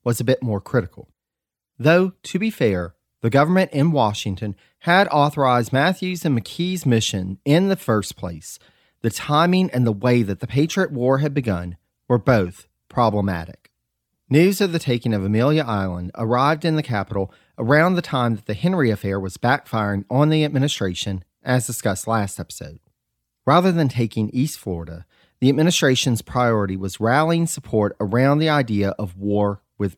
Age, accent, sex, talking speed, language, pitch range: 40-59, American, male, 160 wpm, English, 100-145 Hz